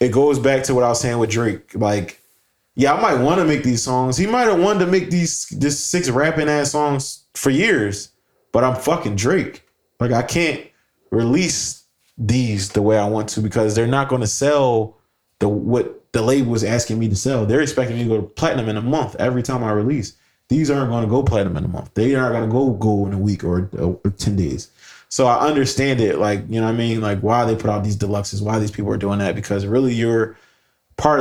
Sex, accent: male, American